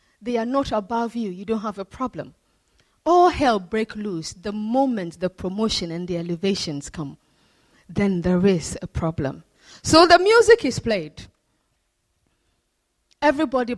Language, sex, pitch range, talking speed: English, female, 195-275 Hz, 145 wpm